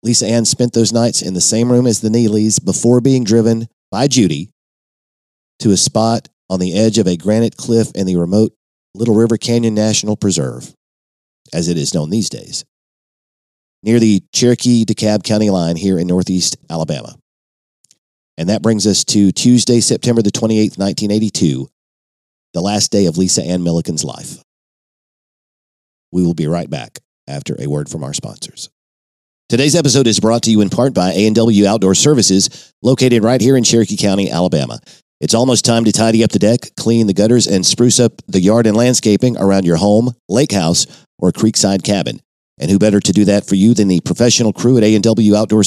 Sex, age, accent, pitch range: male, 40-59, American, 95-115 Hz